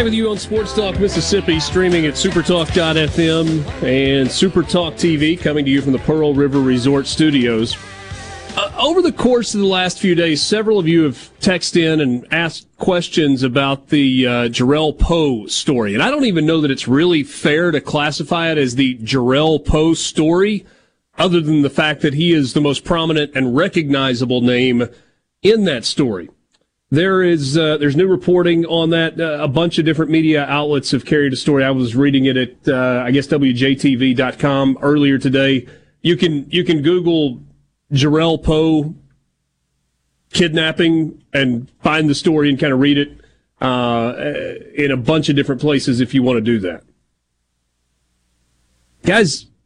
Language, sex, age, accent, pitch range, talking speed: English, male, 40-59, American, 135-165 Hz, 170 wpm